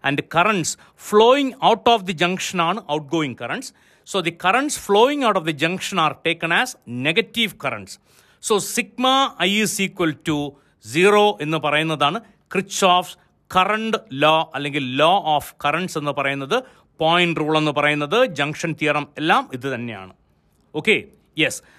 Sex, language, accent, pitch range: male, Malayalam, native, 150-215 Hz